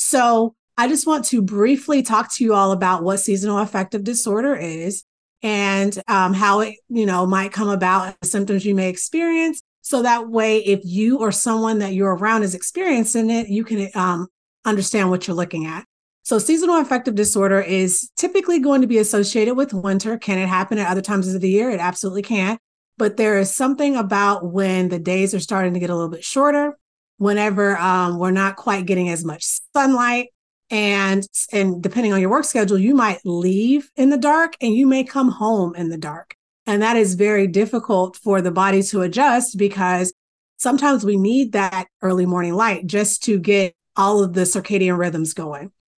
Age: 30-49